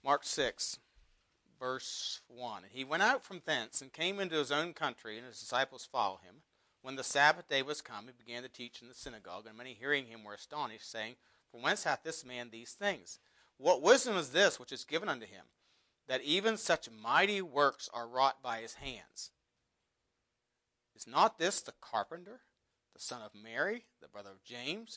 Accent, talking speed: American, 190 wpm